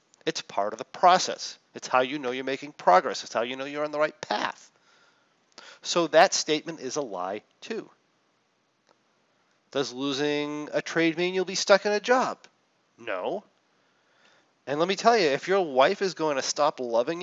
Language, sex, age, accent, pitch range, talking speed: English, male, 40-59, American, 130-180 Hz, 185 wpm